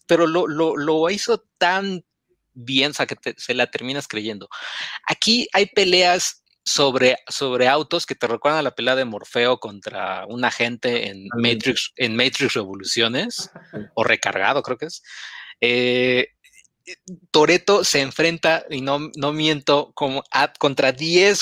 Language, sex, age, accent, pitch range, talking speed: Spanish, male, 30-49, Mexican, 125-175 Hz, 150 wpm